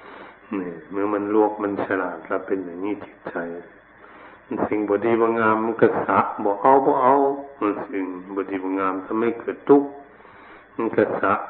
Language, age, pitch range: Thai, 60-79, 95-115 Hz